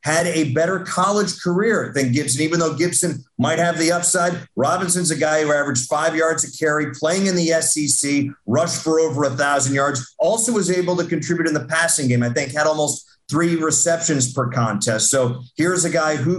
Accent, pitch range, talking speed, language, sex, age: American, 135-160 Hz, 200 wpm, English, male, 50-69